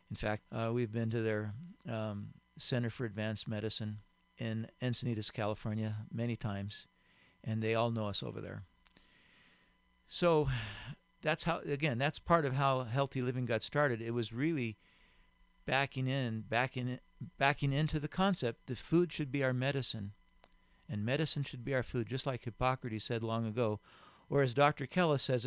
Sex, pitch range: male, 115-150 Hz